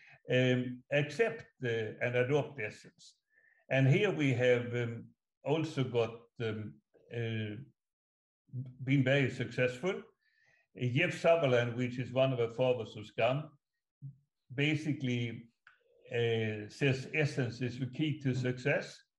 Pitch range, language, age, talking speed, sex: 120-145 Hz, English, 60-79, 120 wpm, male